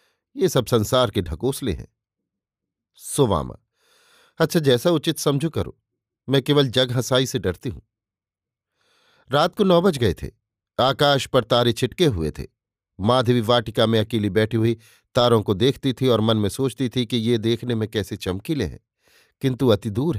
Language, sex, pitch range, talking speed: Hindi, male, 110-140 Hz, 165 wpm